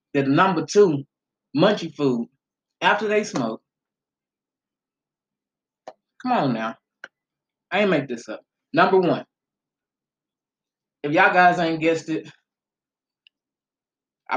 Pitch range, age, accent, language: 135-170 Hz, 20-39, American, English